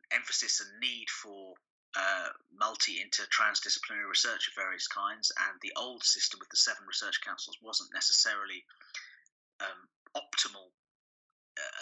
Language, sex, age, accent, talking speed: English, male, 30-49, British, 120 wpm